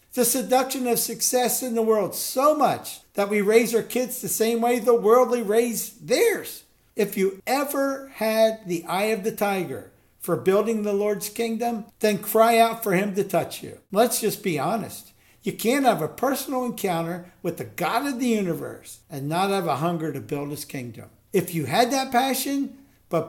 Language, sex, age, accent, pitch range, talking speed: English, male, 60-79, American, 180-240 Hz, 190 wpm